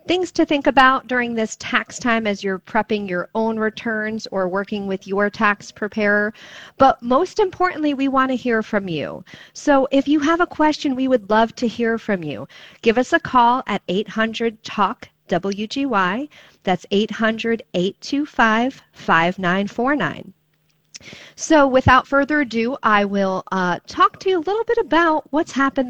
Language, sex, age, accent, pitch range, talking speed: English, female, 40-59, American, 185-255 Hz, 155 wpm